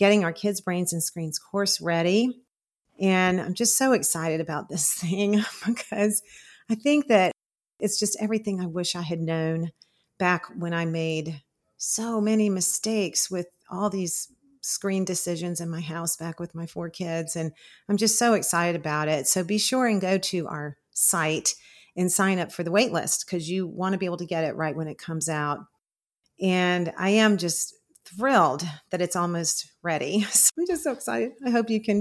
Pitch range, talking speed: 170-215 Hz, 190 wpm